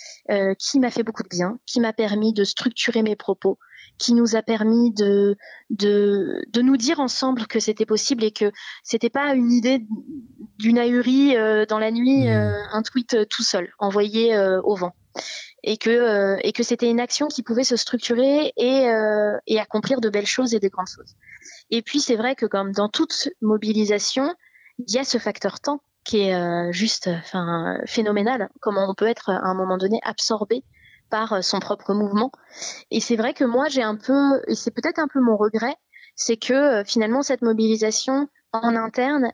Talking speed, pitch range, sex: 190 wpm, 210-255 Hz, female